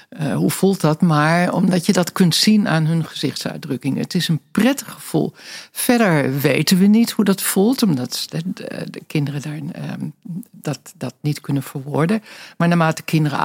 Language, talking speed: Dutch, 180 wpm